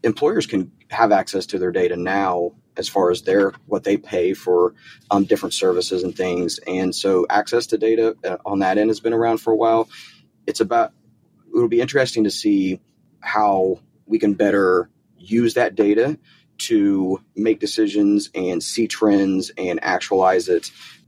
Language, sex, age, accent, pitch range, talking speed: English, male, 30-49, American, 100-115 Hz, 165 wpm